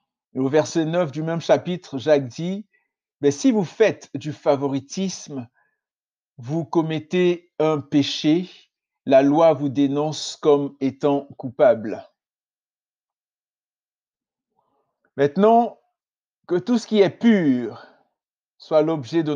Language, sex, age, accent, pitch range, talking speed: French, male, 50-69, French, 145-185 Hz, 110 wpm